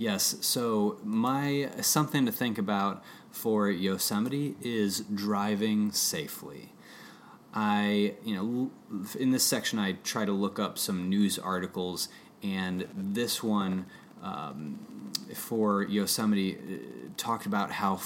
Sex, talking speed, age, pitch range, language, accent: male, 115 wpm, 30-49, 100-140 Hz, English, American